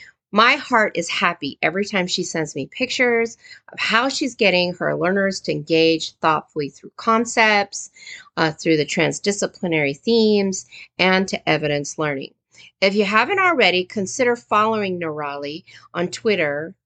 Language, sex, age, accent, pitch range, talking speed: English, female, 40-59, American, 160-225 Hz, 140 wpm